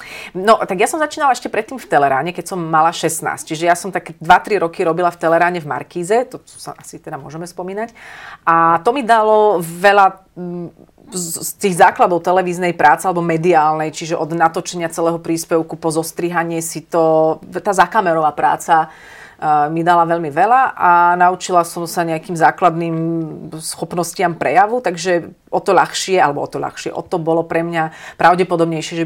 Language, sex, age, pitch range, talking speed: Slovak, female, 30-49, 165-185 Hz, 165 wpm